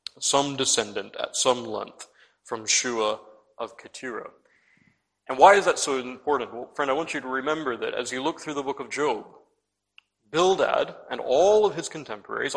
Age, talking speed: 40-59, 175 wpm